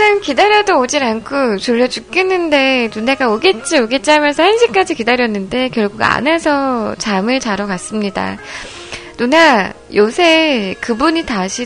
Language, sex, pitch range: Korean, female, 210-325 Hz